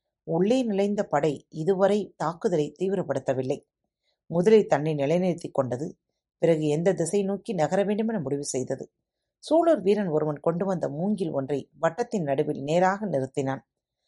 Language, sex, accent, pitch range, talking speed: Tamil, female, native, 145-210 Hz, 130 wpm